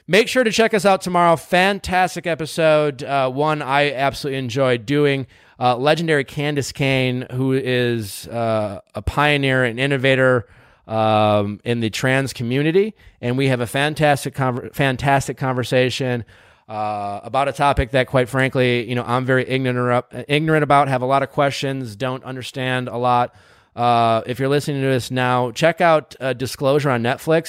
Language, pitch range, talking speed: English, 120-145 Hz, 170 wpm